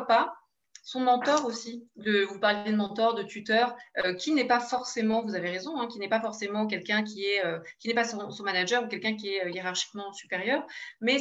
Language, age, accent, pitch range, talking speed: French, 20-39, French, 195-235 Hz, 225 wpm